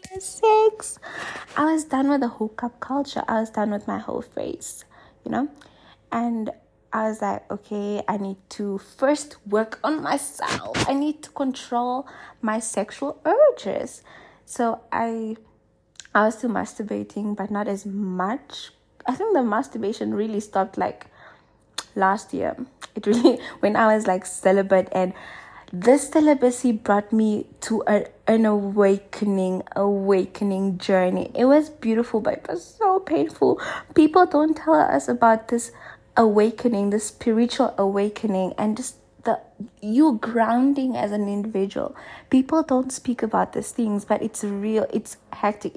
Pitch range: 205-265 Hz